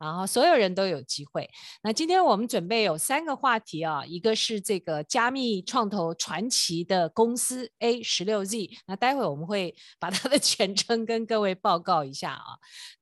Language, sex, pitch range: Chinese, female, 175-235 Hz